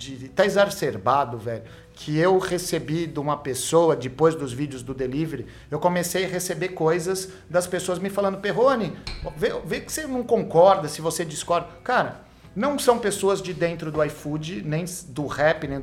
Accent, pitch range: Brazilian, 155-200 Hz